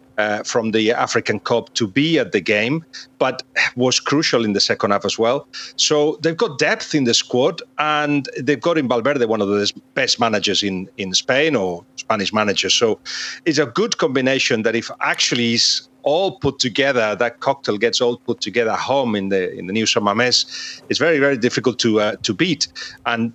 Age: 40-59